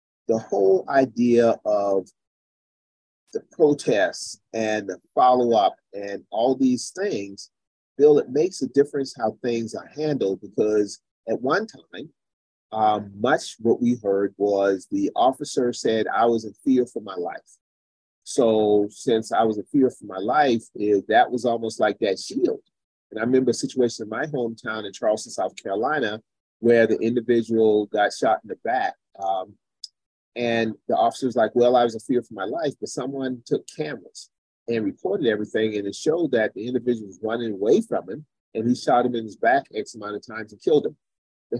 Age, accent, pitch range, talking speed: 30-49, American, 105-135 Hz, 175 wpm